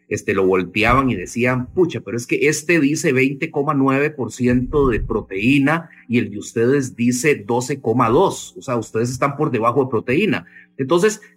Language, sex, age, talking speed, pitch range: English, male, 30-49, 155 wpm, 115-155 Hz